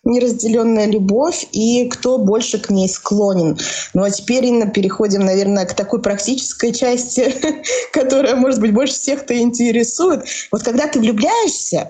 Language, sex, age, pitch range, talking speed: Russian, female, 20-39, 205-260 Hz, 140 wpm